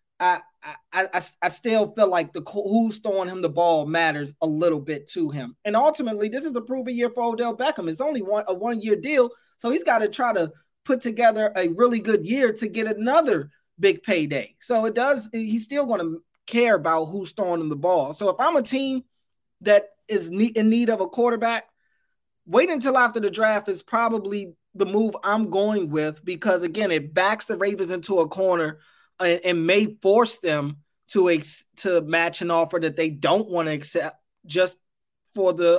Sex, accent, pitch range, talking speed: male, American, 165-220 Hz, 200 wpm